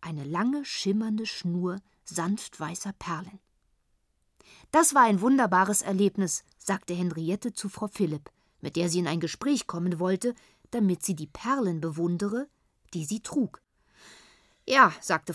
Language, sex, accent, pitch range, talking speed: German, female, German, 165-225 Hz, 135 wpm